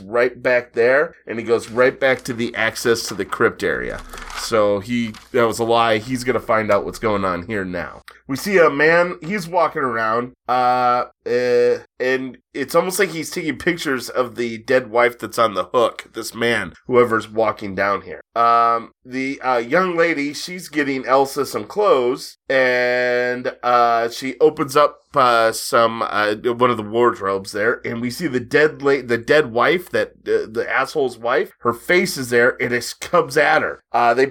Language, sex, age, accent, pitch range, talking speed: English, male, 30-49, American, 115-145 Hz, 190 wpm